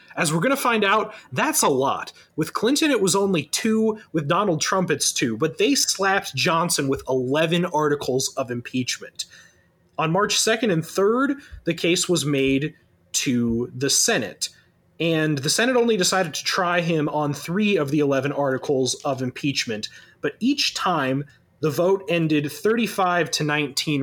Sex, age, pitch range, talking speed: male, 30-49, 140-190 Hz, 165 wpm